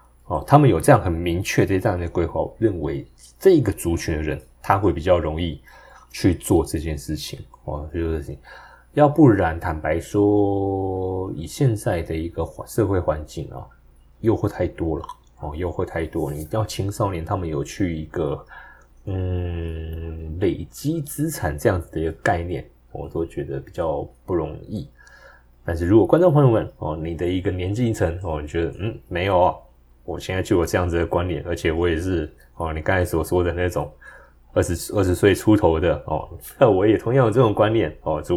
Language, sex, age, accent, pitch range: Chinese, male, 20-39, native, 75-95 Hz